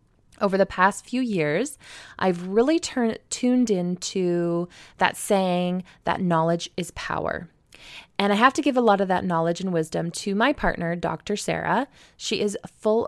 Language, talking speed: English, 165 wpm